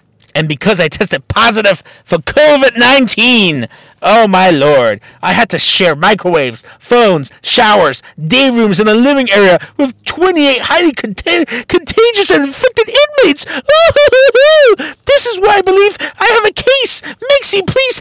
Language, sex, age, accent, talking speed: English, male, 50-69, American, 135 wpm